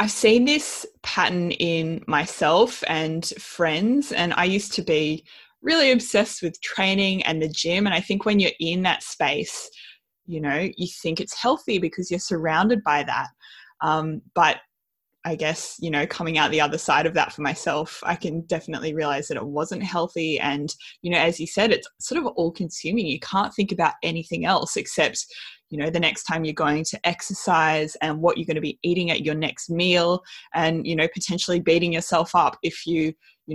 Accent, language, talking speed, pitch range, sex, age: Australian, English, 195 wpm, 160-195 Hz, female, 20-39